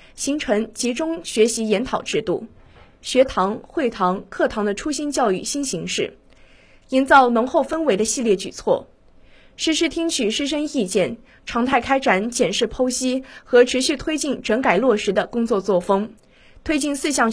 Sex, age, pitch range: female, 20-39, 220-295 Hz